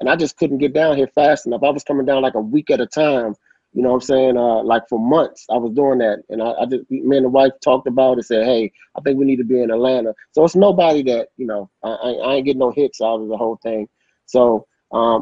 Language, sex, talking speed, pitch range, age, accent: English, male, 290 wpm, 120-145 Hz, 30-49, American